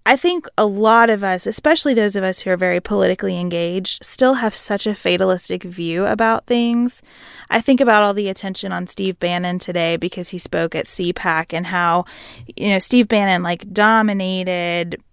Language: English